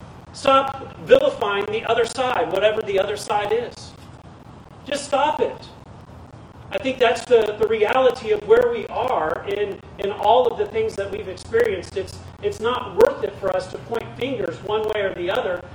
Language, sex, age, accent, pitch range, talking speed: English, male, 40-59, American, 170-245 Hz, 180 wpm